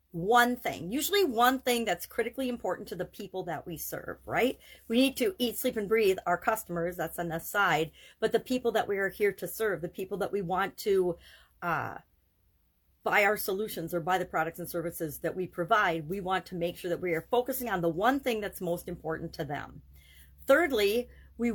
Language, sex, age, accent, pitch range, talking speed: English, female, 40-59, American, 175-230 Hz, 210 wpm